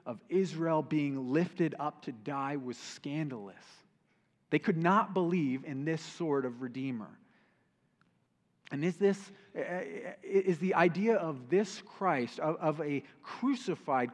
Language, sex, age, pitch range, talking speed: English, male, 30-49, 140-195 Hz, 125 wpm